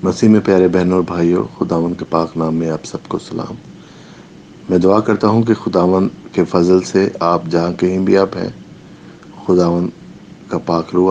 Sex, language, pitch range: male, English, 85-105 Hz